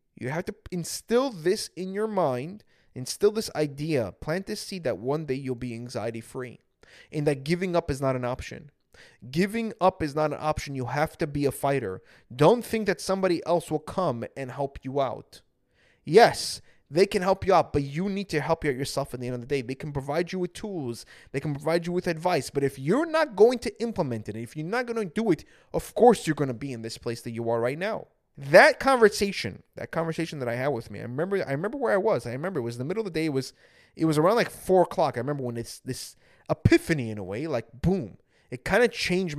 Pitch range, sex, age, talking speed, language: 135-200 Hz, male, 20-39, 245 wpm, English